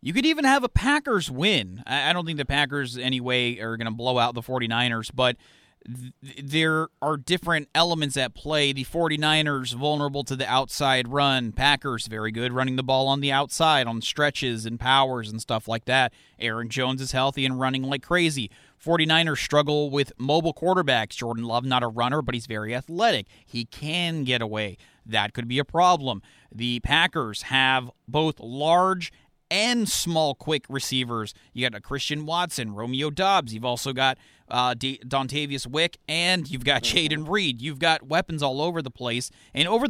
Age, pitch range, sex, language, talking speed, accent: 30-49, 125-160 Hz, male, English, 180 wpm, American